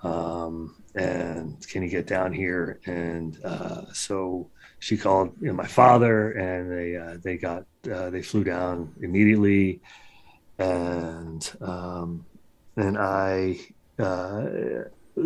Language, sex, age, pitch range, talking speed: English, male, 30-49, 90-110 Hz, 120 wpm